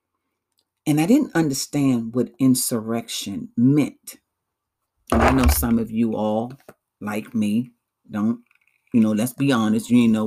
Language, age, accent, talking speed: English, 40-59, American, 145 wpm